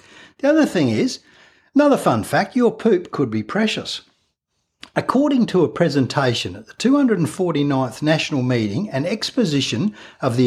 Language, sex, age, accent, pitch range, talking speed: English, male, 60-79, Australian, 140-215 Hz, 145 wpm